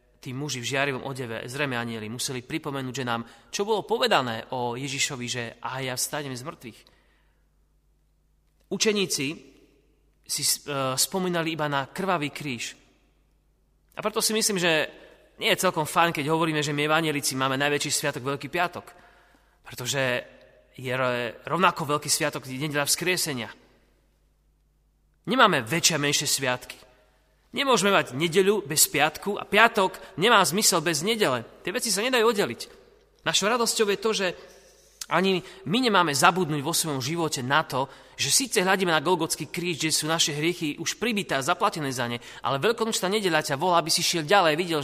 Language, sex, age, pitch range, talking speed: Slovak, male, 30-49, 130-180 Hz, 155 wpm